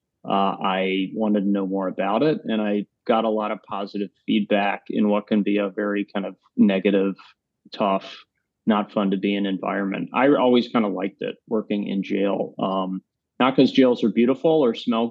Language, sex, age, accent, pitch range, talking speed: English, male, 30-49, American, 100-115 Hz, 195 wpm